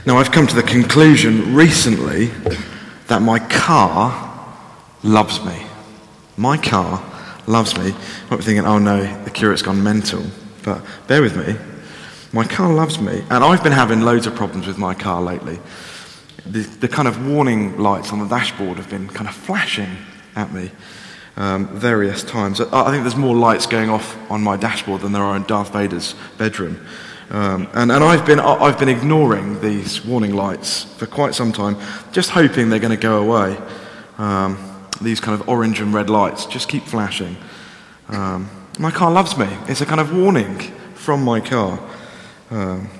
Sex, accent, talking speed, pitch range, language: male, British, 180 wpm, 100-125 Hz, English